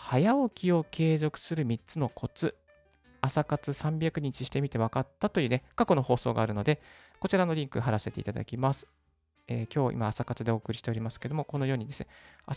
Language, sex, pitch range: Japanese, male, 110-145 Hz